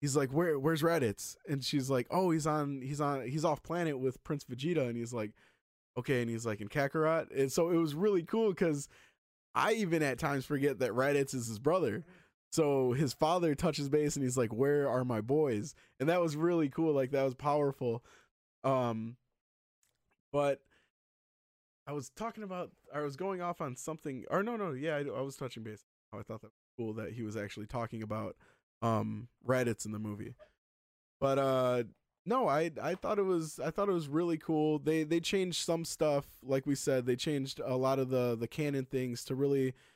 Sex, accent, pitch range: male, American, 125-155 Hz